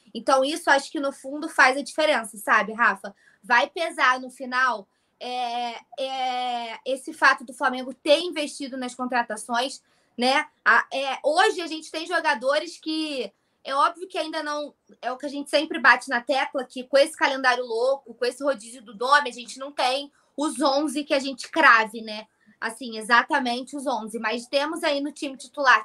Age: 20-39